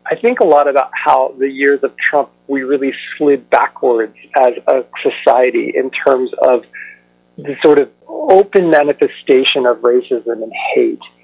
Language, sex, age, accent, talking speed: English, male, 40-59, American, 155 wpm